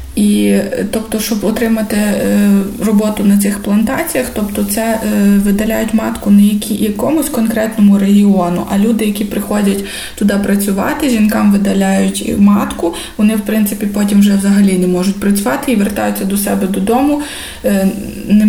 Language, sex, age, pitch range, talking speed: Ukrainian, female, 20-39, 195-225 Hz, 145 wpm